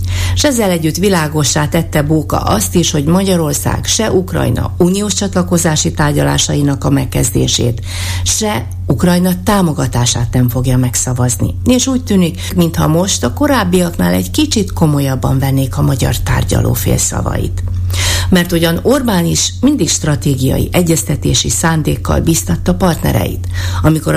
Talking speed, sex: 120 wpm, female